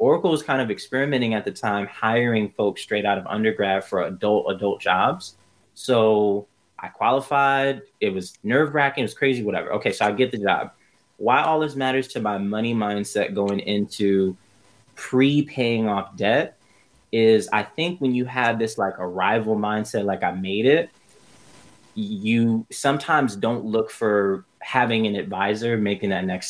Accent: American